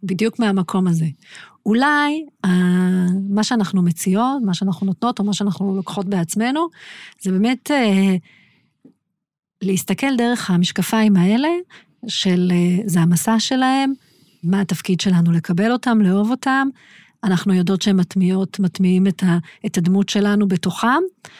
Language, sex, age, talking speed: Hebrew, female, 40-59, 130 wpm